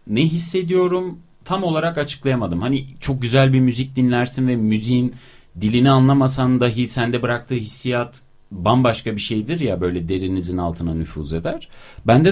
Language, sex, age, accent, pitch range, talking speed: Turkish, male, 40-59, native, 100-155 Hz, 140 wpm